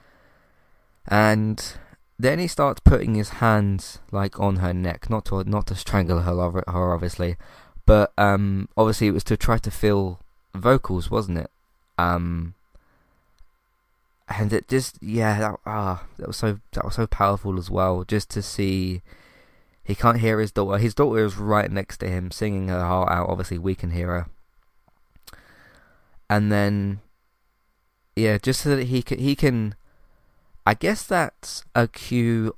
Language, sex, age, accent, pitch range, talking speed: English, male, 20-39, British, 90-110 Hz, 160 wpm